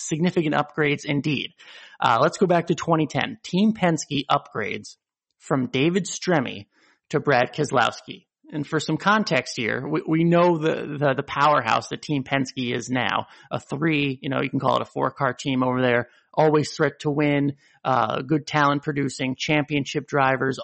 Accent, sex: American, male